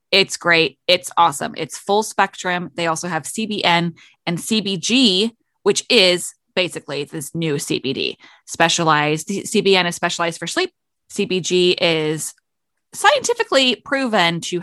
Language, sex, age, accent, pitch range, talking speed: English, female, 20-39, American, 165-215 Hz, 125 wpm